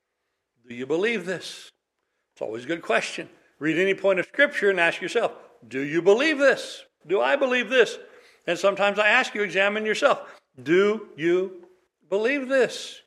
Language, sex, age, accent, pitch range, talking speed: English, male, 60-79, American, 175-235 Hz, 165 wpm